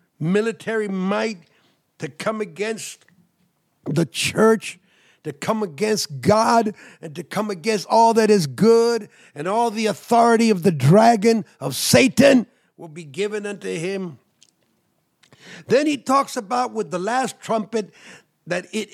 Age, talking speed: 50-69, 135 wpm